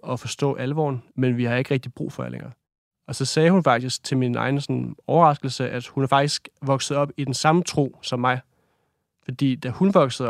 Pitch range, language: 130-145 Hz, Danish